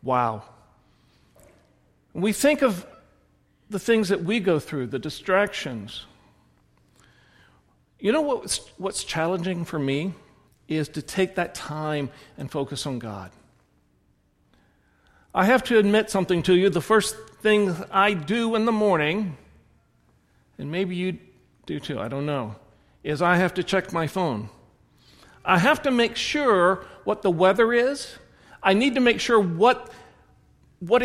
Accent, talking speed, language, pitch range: American, 145 wpm, English, 130-215 Hz